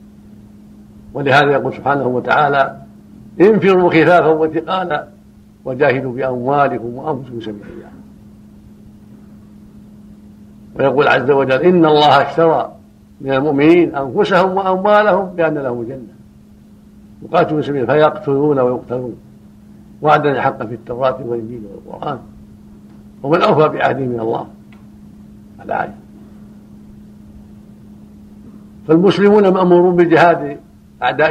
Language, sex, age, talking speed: Arabic, male, 70-89, 80 wpm